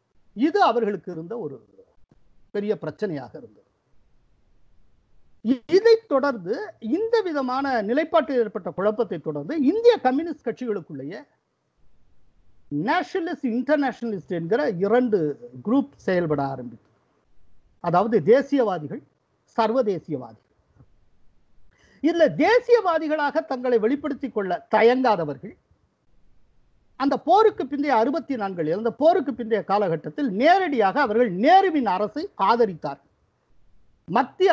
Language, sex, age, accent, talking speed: Tamil, male, 50-69, native, 80 wpm